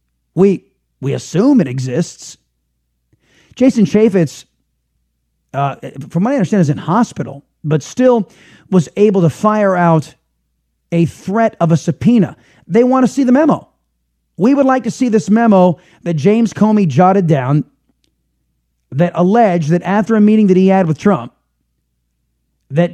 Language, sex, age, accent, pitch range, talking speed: English, male, 30-49, American, 135-200 Hz, 150 wpm